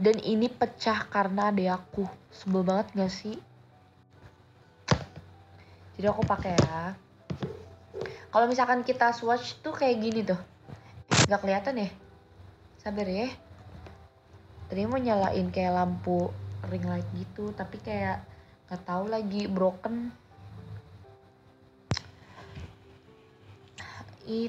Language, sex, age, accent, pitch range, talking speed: Indonesian, female, 20-39, native, 130-210 Hz, 105 wpm